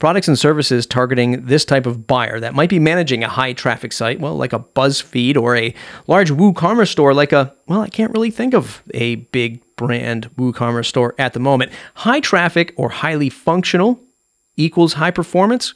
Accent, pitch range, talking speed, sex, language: American, 125-180 Hz, 185 wpm, male, English